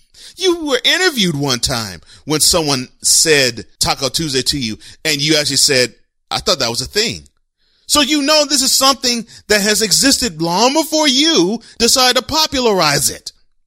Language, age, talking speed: English, 30-49, 165 wpm